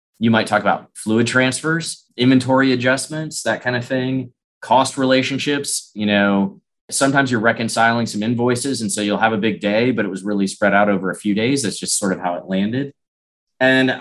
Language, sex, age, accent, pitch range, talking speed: English, male, 30-49, American, 105-130 Hz, 195 wpm